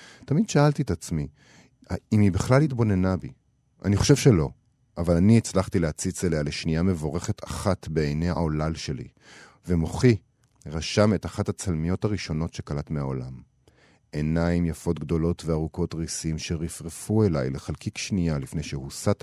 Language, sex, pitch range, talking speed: Hebrew, male, 80-110 Hz, 130 wpm